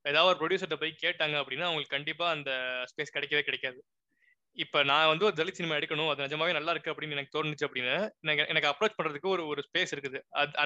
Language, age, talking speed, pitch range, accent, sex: Tamil, 20-39, 190 wpm, 145-175 Hz, native, male